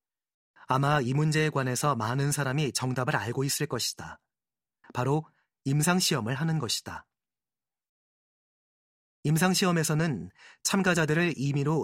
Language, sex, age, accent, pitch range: Korean, male, 30-49, native, 130-170 Hz